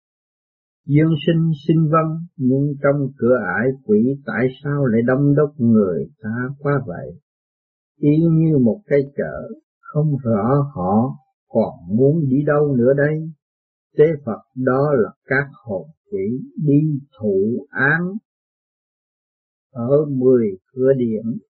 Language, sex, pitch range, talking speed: Vietnamese, male, 130-160 Hz, 130 wpm